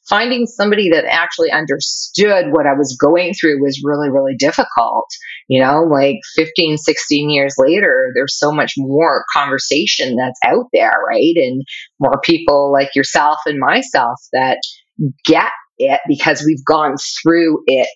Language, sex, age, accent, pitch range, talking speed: English, female, 30-49, American, 145-225 Hz, 150 wpm